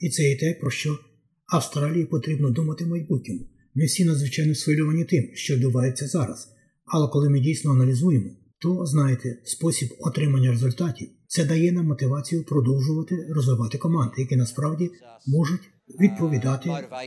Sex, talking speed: male, 135 wpm